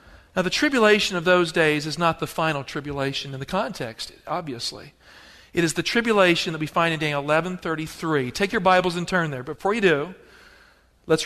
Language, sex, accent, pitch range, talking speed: English, male, American, 170-230 Hz, 185 wpm